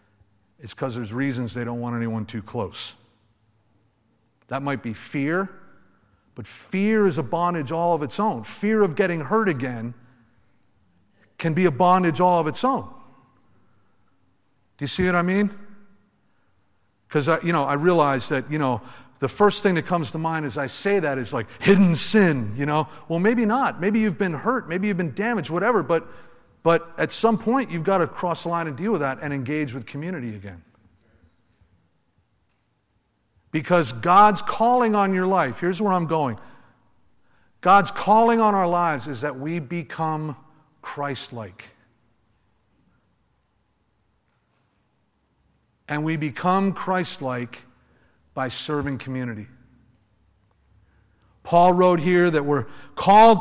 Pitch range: 115-180 Hz